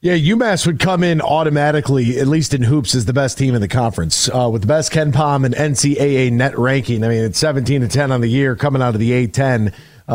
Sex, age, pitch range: male, 40-59, 125-150 Hz